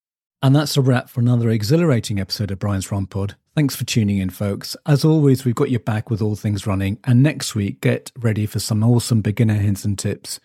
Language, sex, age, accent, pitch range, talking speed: English, male, 40-59, British, 105-130 Hz, 220 wpm